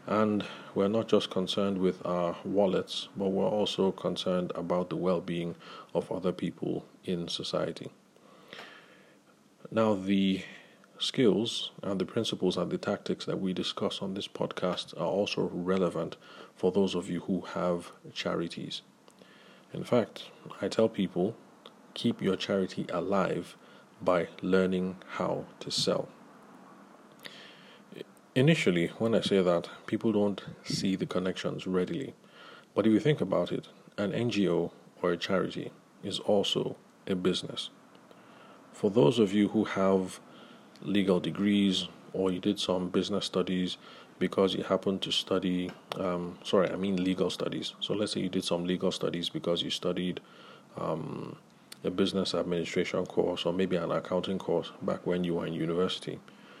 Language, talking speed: English, 145 wpm